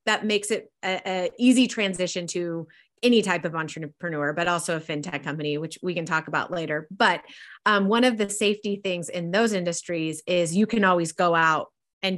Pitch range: 165-205 Hz